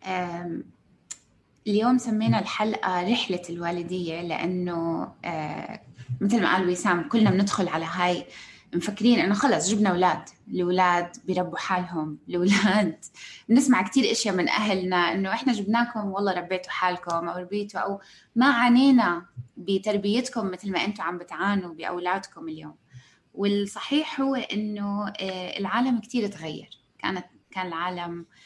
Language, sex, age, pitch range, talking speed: Arabic, female, 20-39, 175-220 Hz, 120 wpm